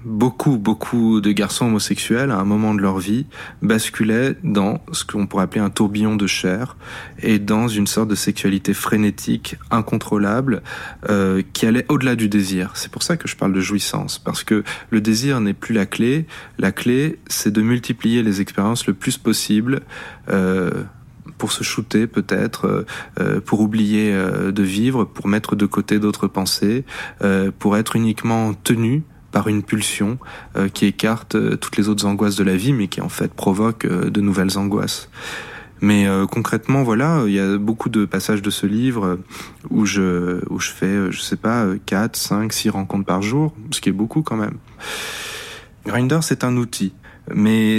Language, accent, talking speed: French, French, 175 wpm